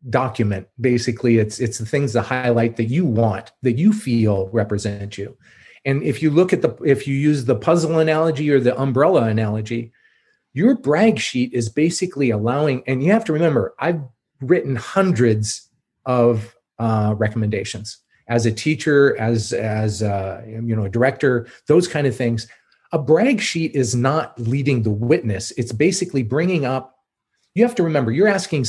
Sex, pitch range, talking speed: male, 115-155 Hz, 170 wpm